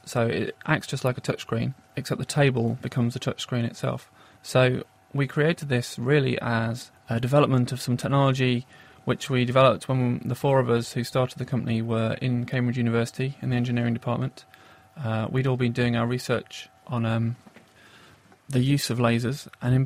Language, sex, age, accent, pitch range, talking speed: English, male, 30-49, British, 115-135 Hz, 180 wpm